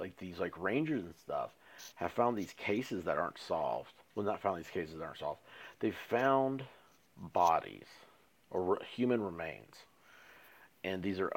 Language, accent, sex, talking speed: English, American, male, 165 wpm